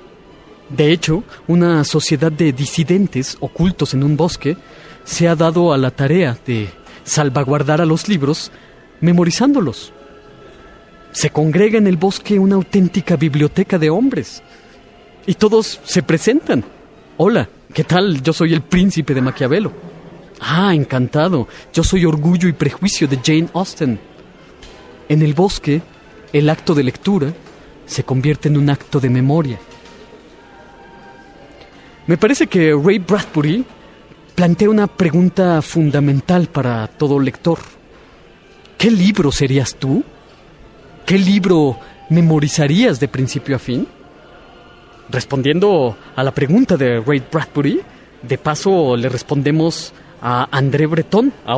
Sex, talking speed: male, 125 wpm